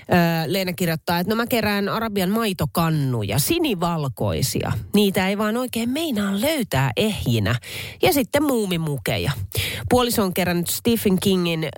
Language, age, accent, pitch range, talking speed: Finnish, 30-49, native, 140-225 Hz, 120 wpm